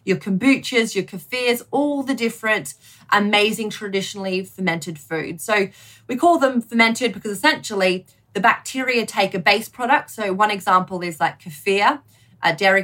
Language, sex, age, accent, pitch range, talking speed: English, female, 30-49, Australian, 185-230 Hz, 150 wpm